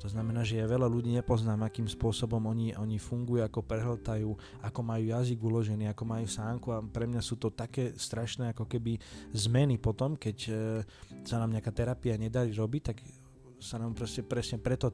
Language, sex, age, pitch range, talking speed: Slovak, male, 20-39, 105-125 Hz, 180 wpm